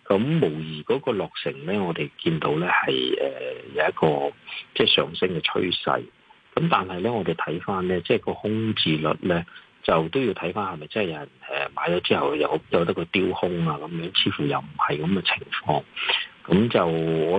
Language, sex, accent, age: Chinese, male, native, 40-59